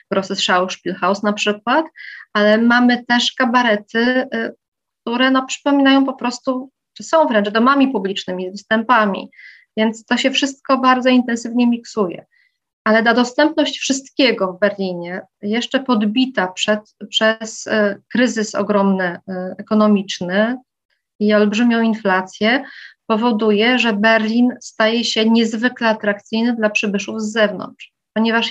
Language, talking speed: Polish, 115 wpm